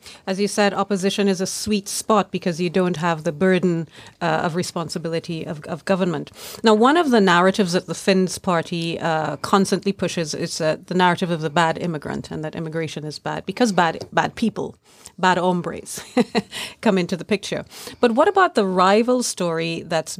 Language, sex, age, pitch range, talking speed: Finnish, female, 40-59, 165-200 Hz, 185 wpm